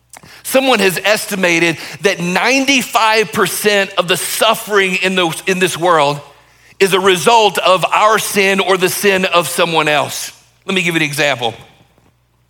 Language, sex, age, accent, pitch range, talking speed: English, male, 40-59, American, 170-220 Hz, 145 wpm